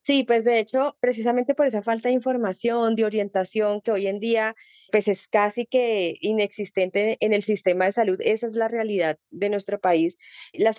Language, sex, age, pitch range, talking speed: Spanish, female, 20-39, 195-230 Hz, 185 wpm